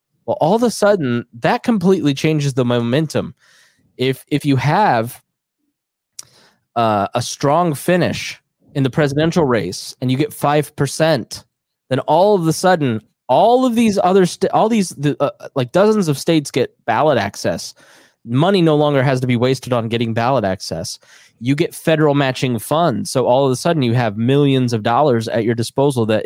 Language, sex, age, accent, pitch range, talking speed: English, male, 20-39, American, 120-150 Hz, 180 wpm